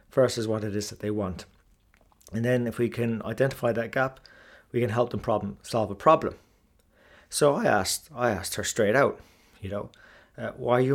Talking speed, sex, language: 205 wpm, male, English